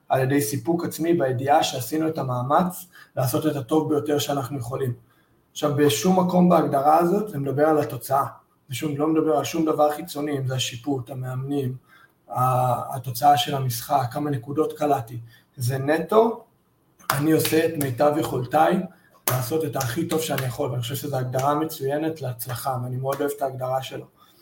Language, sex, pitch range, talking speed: Hebrew, male, 130-155 Hz, 160 wpm